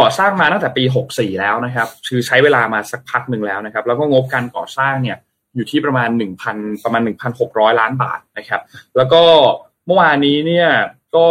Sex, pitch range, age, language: male, 120-155 Hz, 20-39, Thai